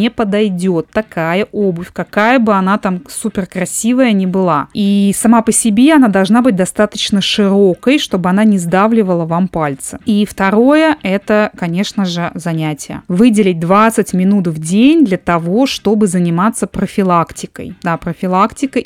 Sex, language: female, Russian